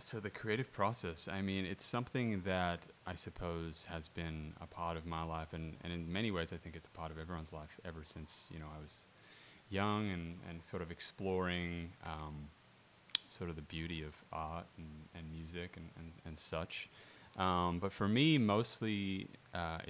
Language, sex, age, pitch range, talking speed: English, male, 30-49, 80-95 Hz, 190 wpm